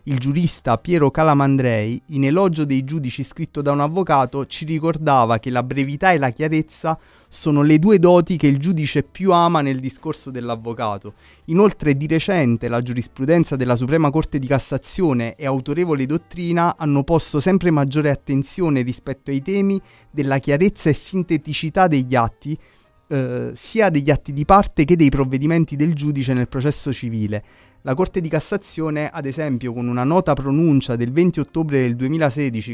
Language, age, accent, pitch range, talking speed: Italian, 30-49, native, 130-165 Hz, 160 wpm